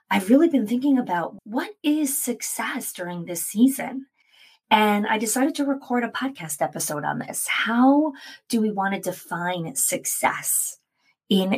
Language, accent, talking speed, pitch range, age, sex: English, American, 150 wpm, 175-250 Hz, 30-49, female